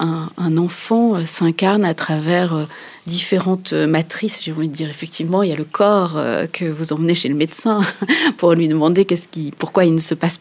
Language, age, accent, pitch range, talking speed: French, 30-49, French, 160-200 Hz, 180 wpm